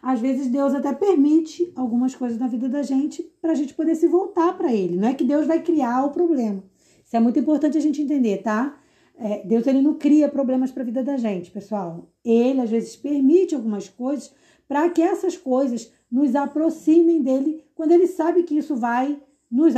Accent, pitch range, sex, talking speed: Brazilian, 225-300 Hz, female, 195 wpm